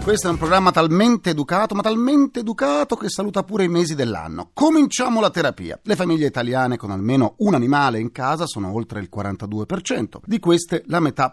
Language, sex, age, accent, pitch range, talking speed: Italian, male, 40-59, native, 110-180 Hz, 185 wpm